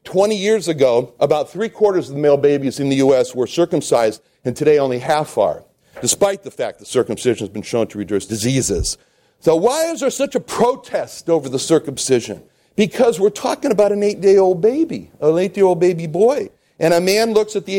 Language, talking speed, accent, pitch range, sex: English, 190 wpm, American, 150-230 Hz, male